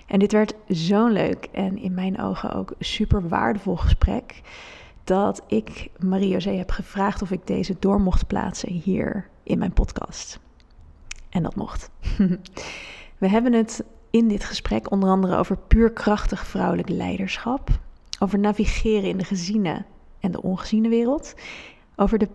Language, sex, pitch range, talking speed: Dutch, female, 185-215 Hz, 150 wpm